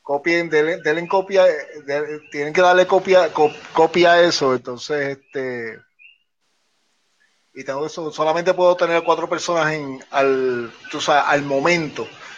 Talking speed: 125 wpm